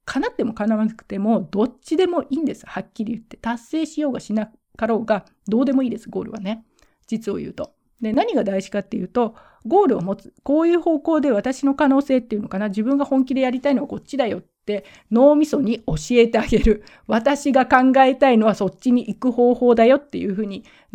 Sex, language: female, Japanese